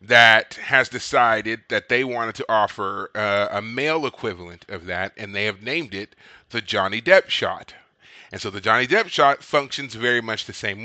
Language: English